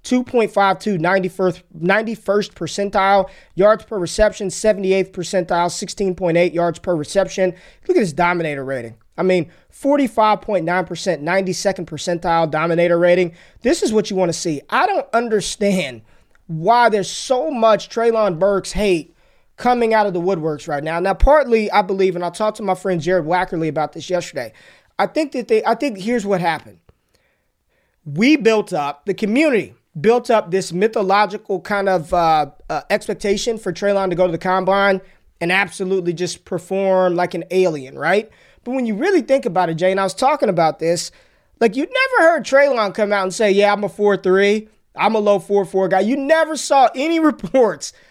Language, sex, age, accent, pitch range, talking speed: English, male, 20-39, American, 180-220 Hz, 175 wpm